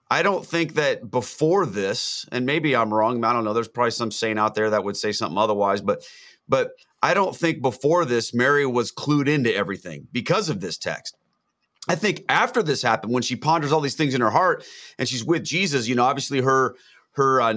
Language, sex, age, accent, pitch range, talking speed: English, male, 30-49, American, 115-150 Hz, 220 wpm